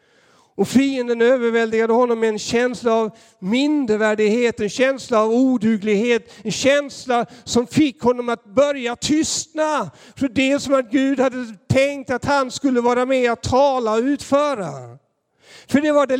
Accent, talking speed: native, 150 wpm